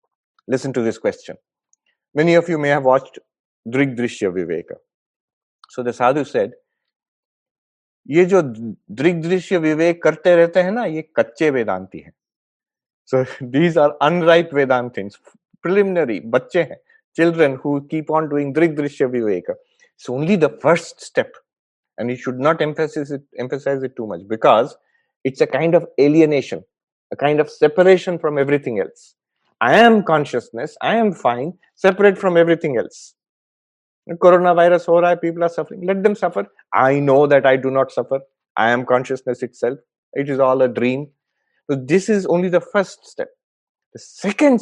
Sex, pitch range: male, 135-195 Hz